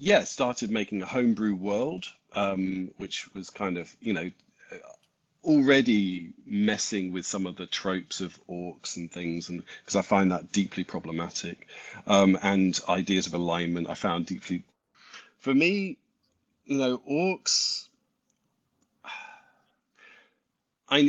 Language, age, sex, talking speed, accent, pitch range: English, 40-59, male, 130 wpm, British, 90-110 Hz